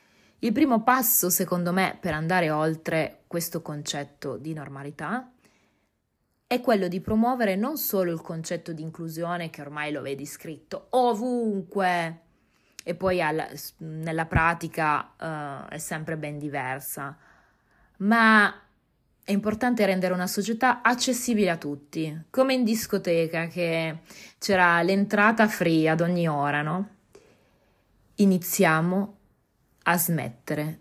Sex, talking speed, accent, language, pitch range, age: female, 120 wpm, native, Italian, 150-190 Hz, 20-39